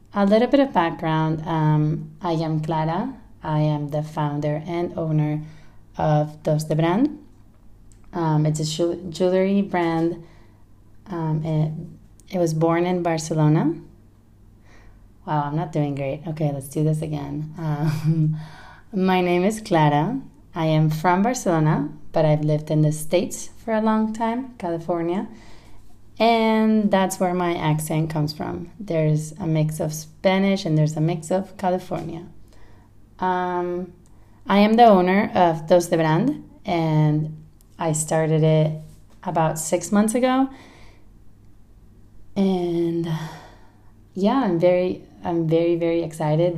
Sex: female